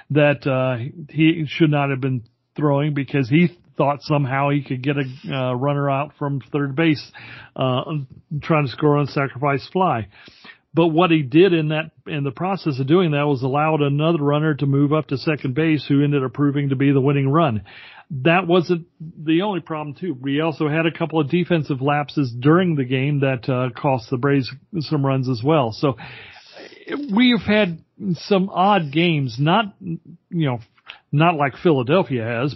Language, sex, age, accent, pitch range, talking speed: English, male, 40-59, American, 135-160 Hz, 180 wpm